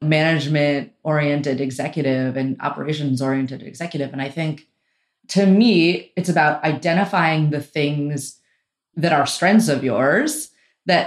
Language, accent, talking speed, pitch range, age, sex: English, American, 115 wpm, 140-170 Hz, 30-49, female